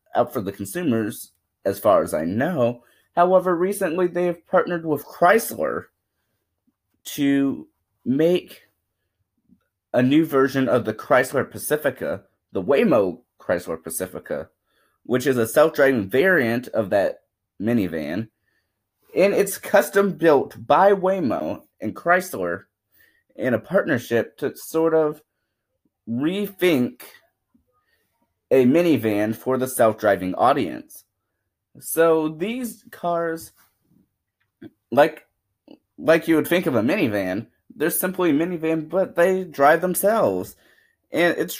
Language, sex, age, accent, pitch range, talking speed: English, male, 30-49, American, 115-180 Hz, 110 wpm